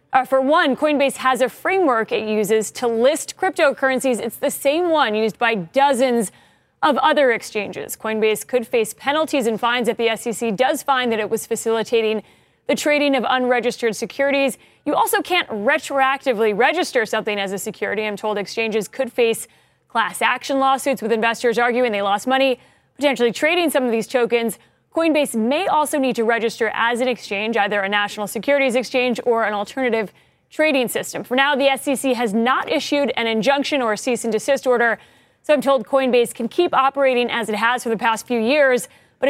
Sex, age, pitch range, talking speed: female, 30-49, 225-275 Hz, 185 wpm